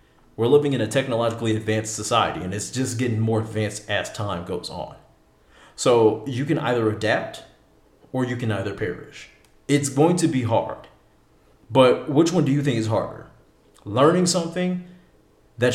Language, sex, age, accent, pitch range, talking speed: English, male, 30-49, American, 115-165 Hz, 165 wpm